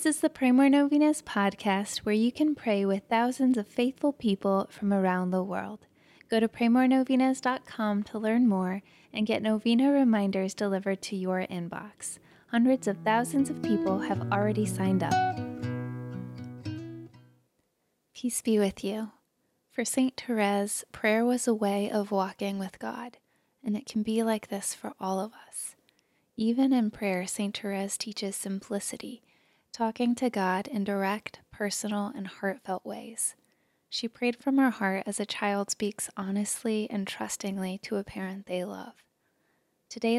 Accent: American